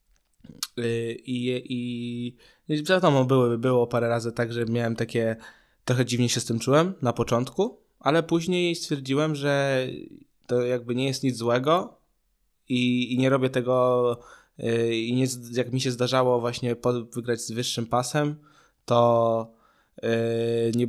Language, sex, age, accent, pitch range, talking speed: Polish, male, 20-39, native, 115-140 Hz, 135 wpm